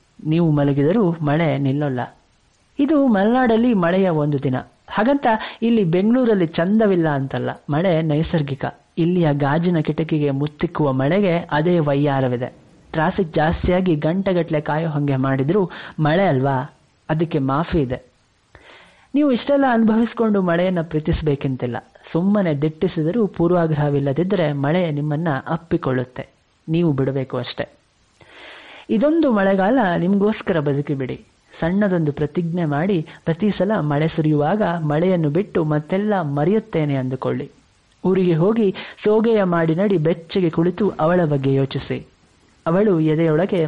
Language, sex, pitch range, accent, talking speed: Kannada, male, 145-190 Hz, native, 105 wpm